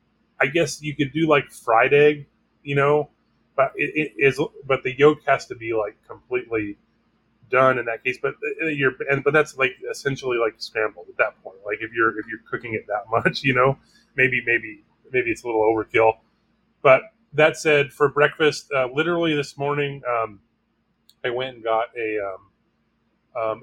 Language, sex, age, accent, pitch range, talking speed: English, male, 30-49, American, 120-150 Hz, 185 wpm